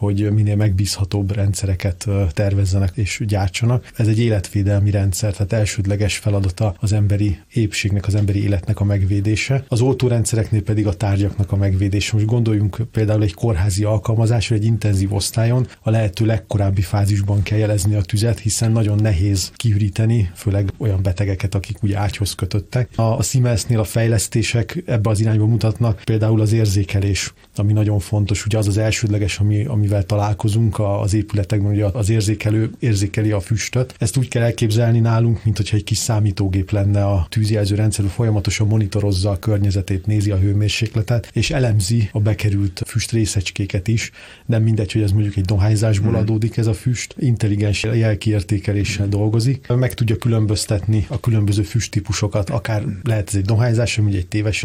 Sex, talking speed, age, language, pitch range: male, 155 wpm, 30-49, Hungarian, 100-110 Hz